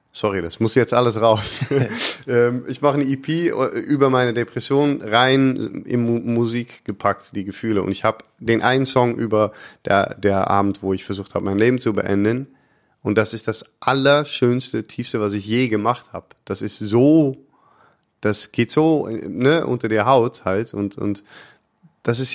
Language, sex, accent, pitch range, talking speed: German, male, German, 105-125 Hz, 170 wpm